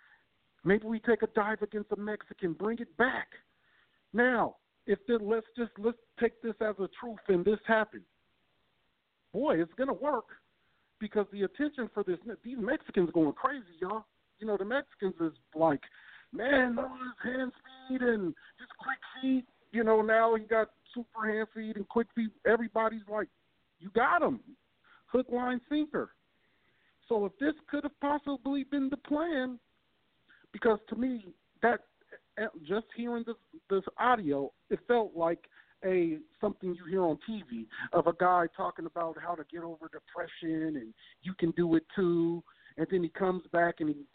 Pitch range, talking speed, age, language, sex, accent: 170-235 Hz, 165 wpm, 50-69, English, male, American